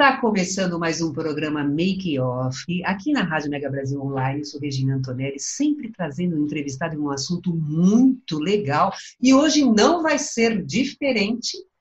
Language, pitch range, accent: Portuguese, 165-235 Hz, Brazilian